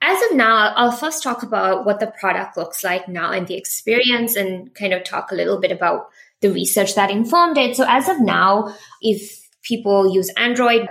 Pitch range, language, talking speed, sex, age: 185-220 Hz, English, 205 wpm, female, 20-39